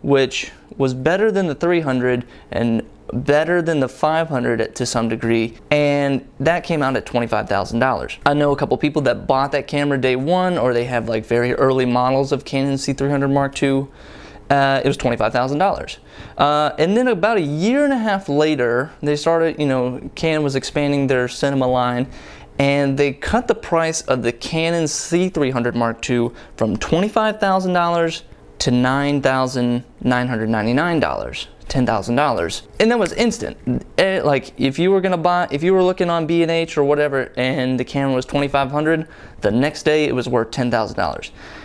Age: 20-39